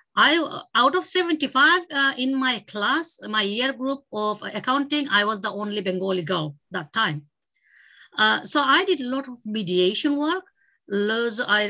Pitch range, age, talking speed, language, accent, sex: 190-255 Hz, 50-69, 165 wpm, English, Indian, female